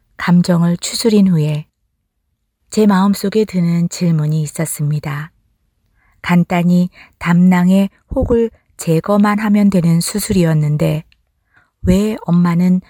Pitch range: 160-200 Hz